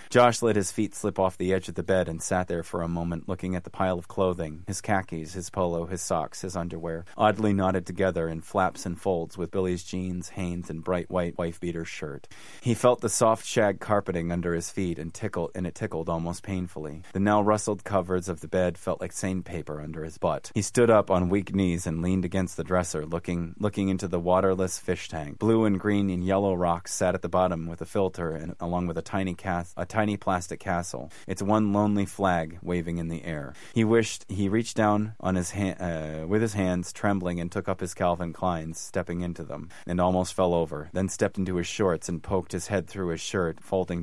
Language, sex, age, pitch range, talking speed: English, male, 30-49, 85-95 Hz, 225 wpm